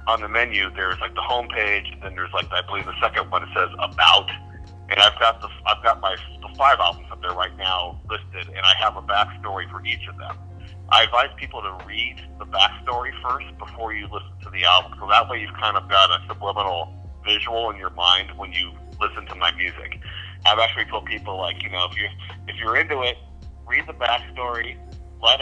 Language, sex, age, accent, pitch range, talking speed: English, male, 40-59, American, 85-105 Hz, 215 wpm